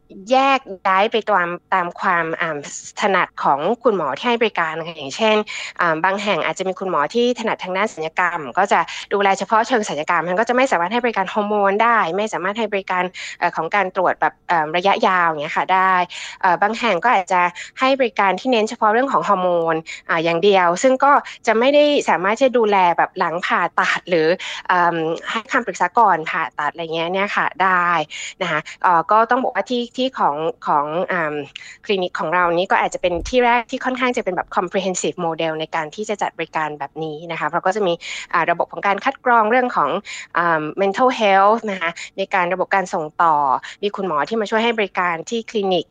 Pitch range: 170-220 Hz